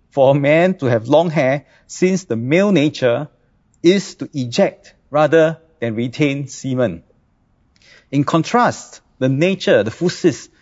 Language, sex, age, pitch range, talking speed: English, male, 50-69, 135-180 Hz, 135 wpm